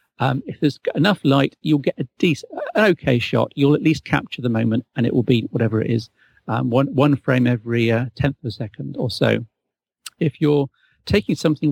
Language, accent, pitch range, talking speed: English, British, 125-155 Hz, 210 wpm